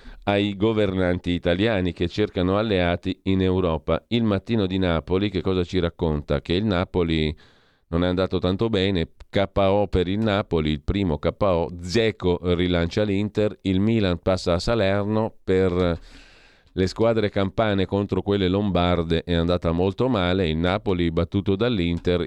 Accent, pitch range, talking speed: native, 80-100 Hz, 145 wpm